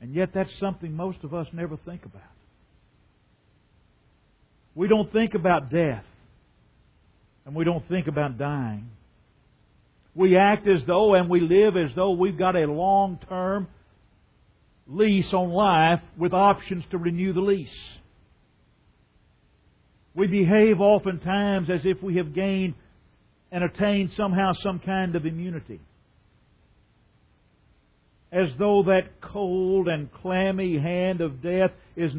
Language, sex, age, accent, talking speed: English, male, 50-69, American, 125 wpm